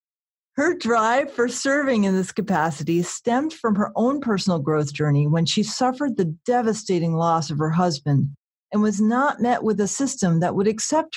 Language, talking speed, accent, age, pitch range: English, 175 wpm, American, 40-59, 175-255 Hz